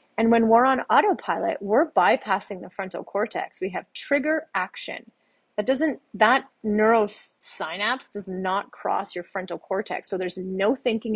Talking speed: 150 wpm